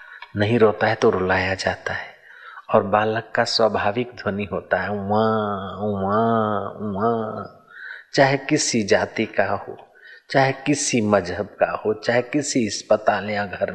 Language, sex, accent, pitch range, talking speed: Hindi, male, native, 100-120 Hz, 140 wpm